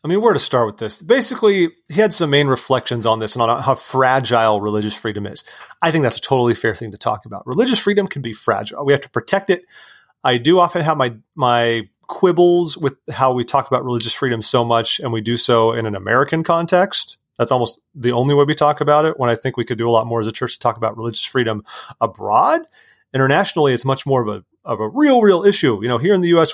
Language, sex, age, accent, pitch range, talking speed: English, male, 30-49, American, 110-145 Hz, 250 wpm